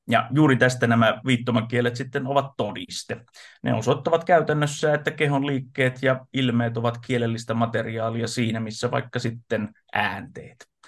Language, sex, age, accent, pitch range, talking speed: Finnish, male, 30-49, native, 115-130 Hz, 130 wpm